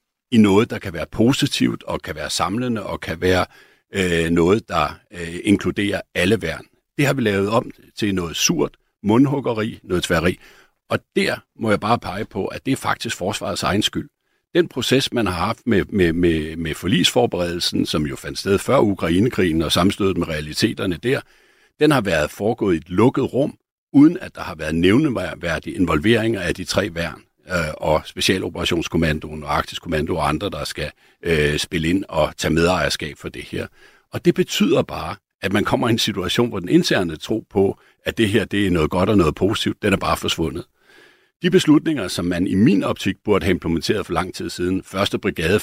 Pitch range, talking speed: 85-115 Hz, 195 wpm